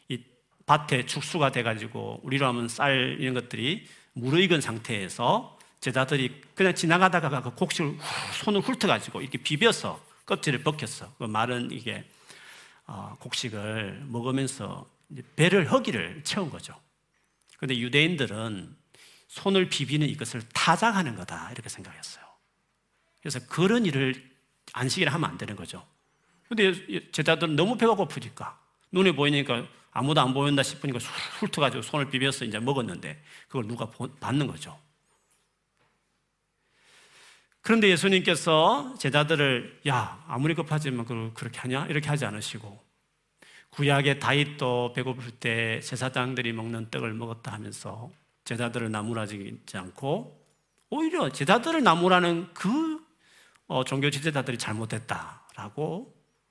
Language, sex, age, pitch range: Korean, male, 40-59, 120-165 Hz